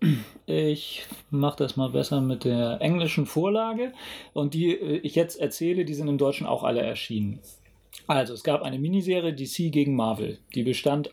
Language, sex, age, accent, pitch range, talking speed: German, male, 40-59, German, 130-170 Hz, 165 wpm